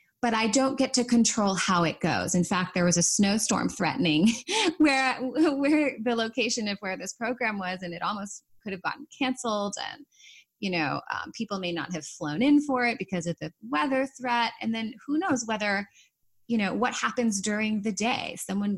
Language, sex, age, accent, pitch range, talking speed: English, female, 30-49, American, 180-240 Hz, 200 wpm